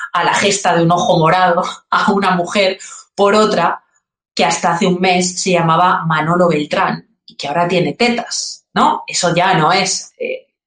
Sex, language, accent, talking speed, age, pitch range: female, Spanish, Spanish, 180 wpm, 30-49, 175-220 Hz